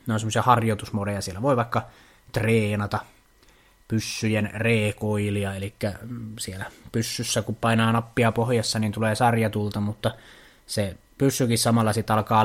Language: Finnish